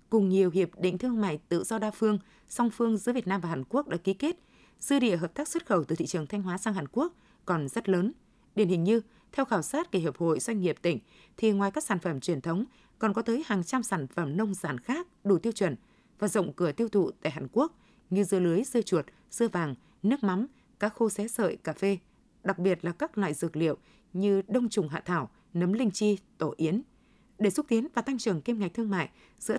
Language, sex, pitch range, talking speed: Vietnamese, female, 180-235 Hz, 245 wpm